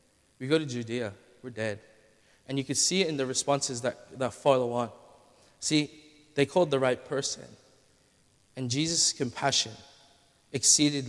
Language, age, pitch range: English, 20-39, 115-140 Hz